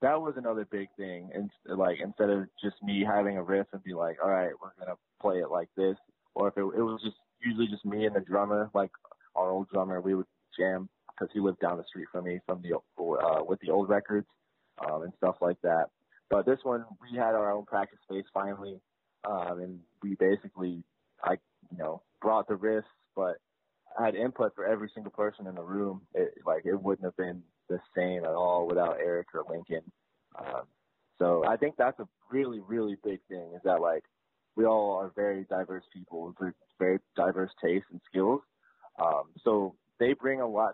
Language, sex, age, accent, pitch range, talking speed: English, male, 20-39, American, 95-110 Hz, 205 wpm